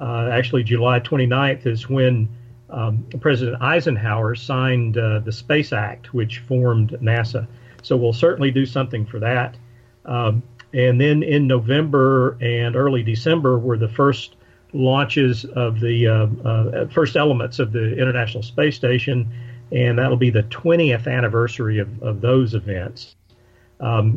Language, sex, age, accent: English, male, 40-59, American